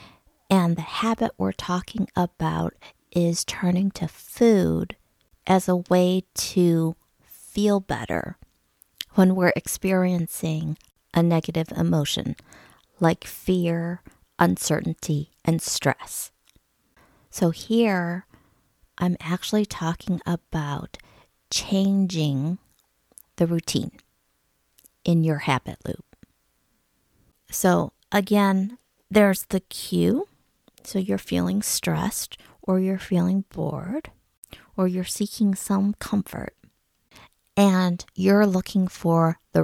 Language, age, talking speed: English, 50-69, 95 wpm